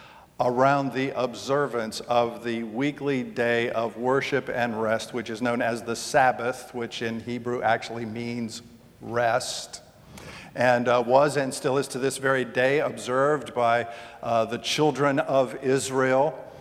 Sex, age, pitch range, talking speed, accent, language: male, 50-69, 120-140 Hz, 145 wpm, American, English